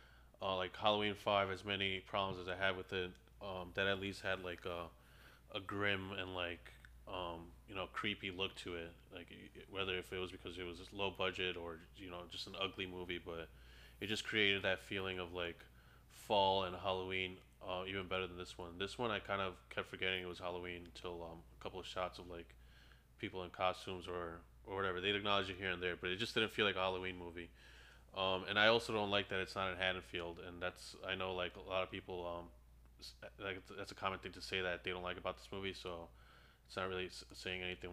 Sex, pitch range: male, 85-95 Hz